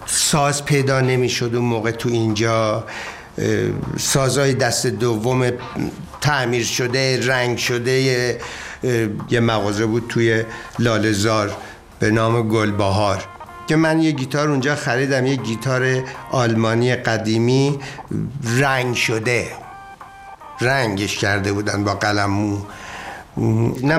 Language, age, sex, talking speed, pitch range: Persian, 50-69, male, 105 wpm, 115-145 Hz